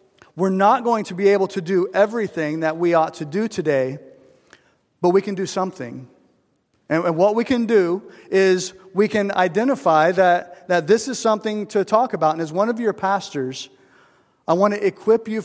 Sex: male